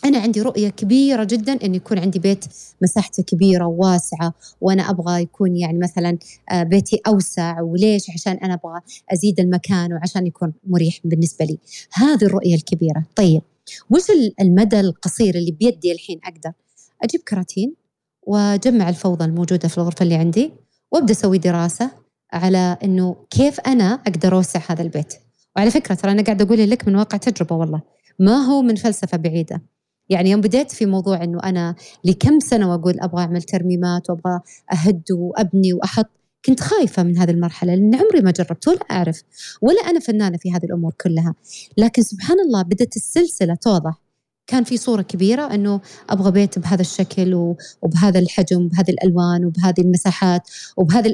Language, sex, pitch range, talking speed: Arabic, female, 175-220 Hz, 155 wpm